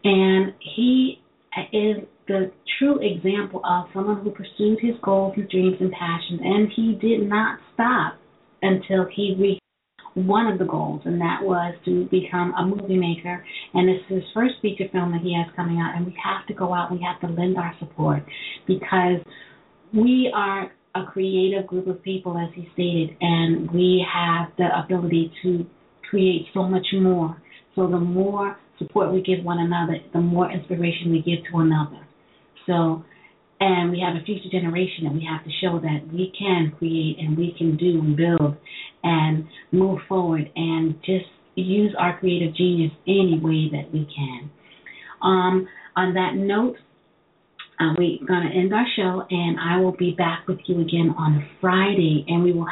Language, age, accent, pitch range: English, 40-59, American, 170-195 Hz